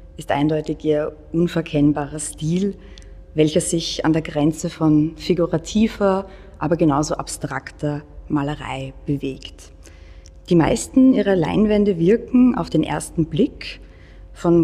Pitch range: 150-185 Hz